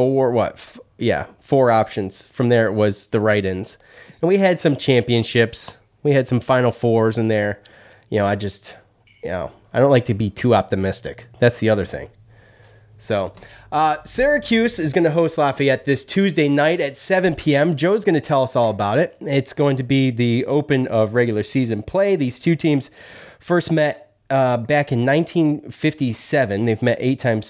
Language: English